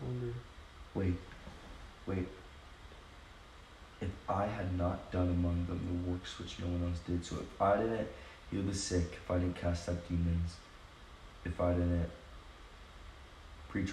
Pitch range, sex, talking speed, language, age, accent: 80-90 Hz, male, 140 wpm, English, 20-39, American